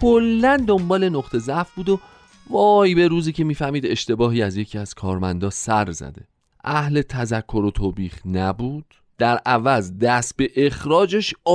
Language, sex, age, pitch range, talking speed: Persian, male, 40-59, 105-165 Hz, 145 wpm